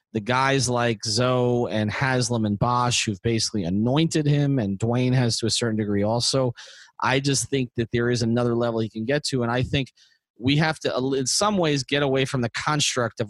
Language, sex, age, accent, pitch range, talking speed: English, male, 30-49, American, 115-140 Hz, 210 wpm